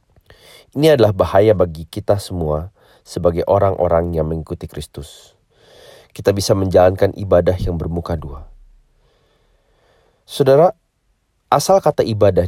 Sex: male